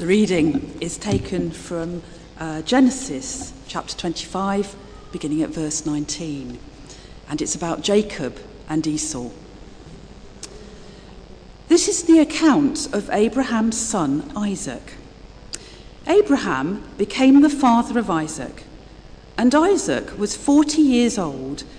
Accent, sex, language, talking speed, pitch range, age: British, female, English, 105 wpm, 160-270 Hz, 50-69